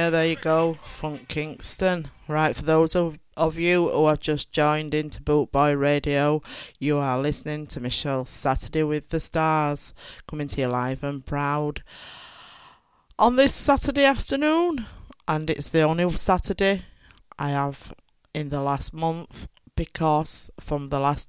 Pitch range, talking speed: 140-165 Hz, 150 wpm